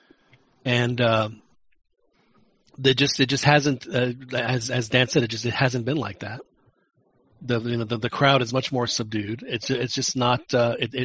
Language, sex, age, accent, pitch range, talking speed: English, male, 40-59, American, 120-145 Hz, 190 wpm